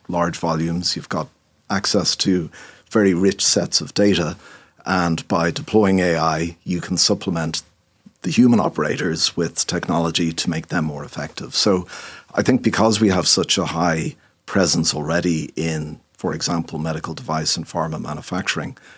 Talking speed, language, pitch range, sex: 150 wpm, English, 80-90 Hz, male